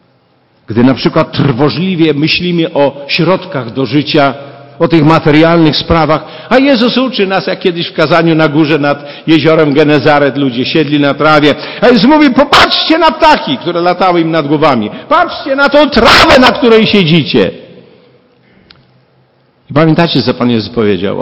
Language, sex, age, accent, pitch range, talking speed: Polish, male, 50-69, native, 135-210 Hz, 155 wpm